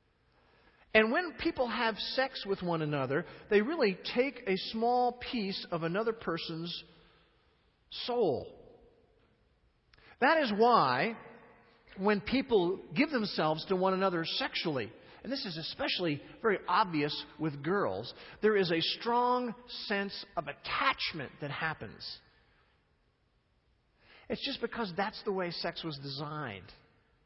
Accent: American